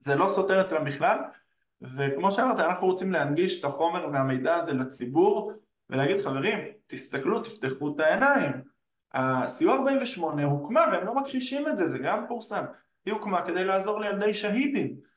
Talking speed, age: 150 wpm, 20-39